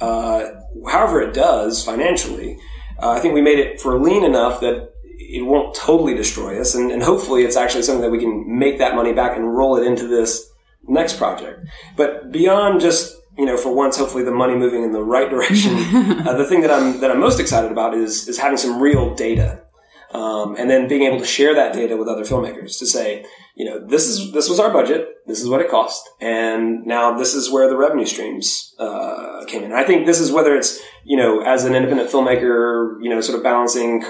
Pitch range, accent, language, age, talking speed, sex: 115-135 Hz, American, English, 30-49, 220 wpm, male